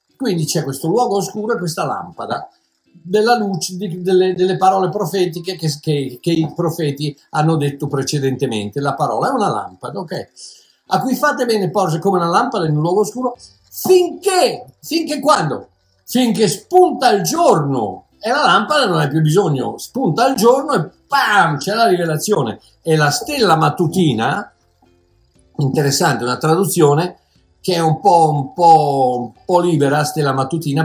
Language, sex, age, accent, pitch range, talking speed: Italian, male, 50-69, native, 145-205 Hz, 155 wpm